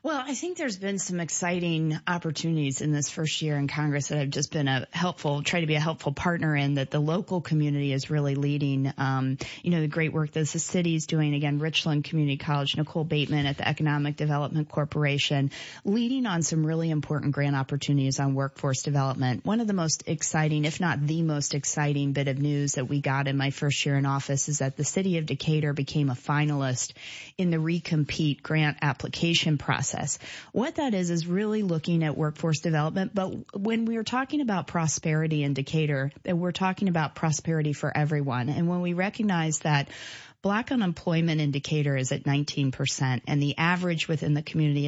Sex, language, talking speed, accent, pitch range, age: female, English, 195 wpm, American, 145-170 Hz, 30-49